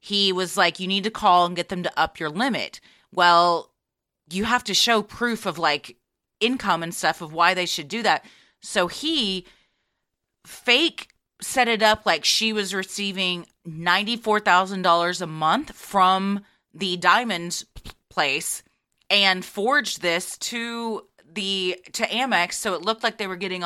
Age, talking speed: 30-49, 155 wpm